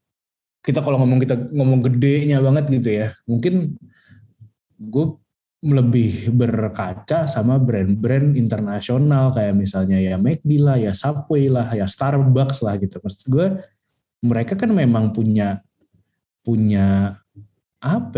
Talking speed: 120 wpm